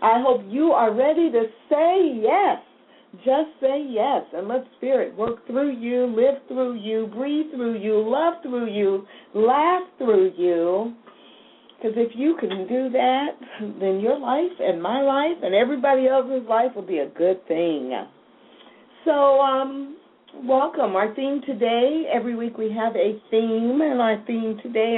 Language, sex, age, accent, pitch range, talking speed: English, female, 50-69, American, 195-265 Hz, 160 wpm